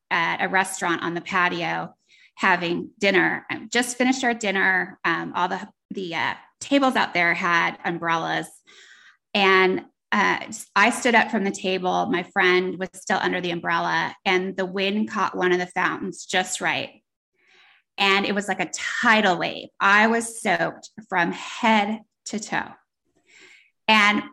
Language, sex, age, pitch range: English, female, 20-39, 185-245 Hz